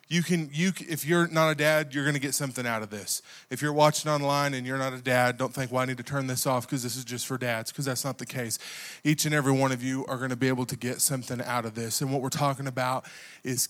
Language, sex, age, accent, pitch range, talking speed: English, male, 20-39, American, 130-150 Hz, 300 wpm